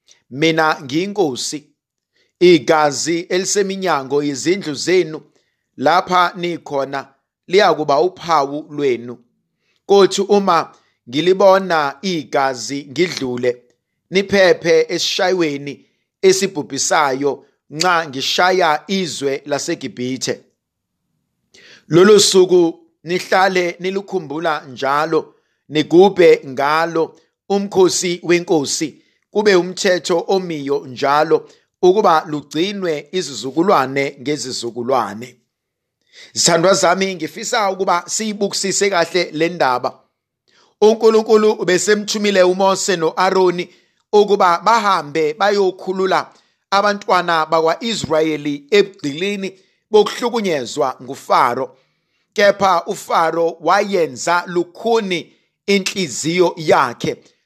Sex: male